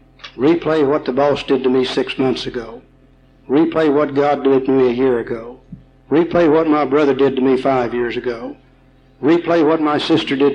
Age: 60-79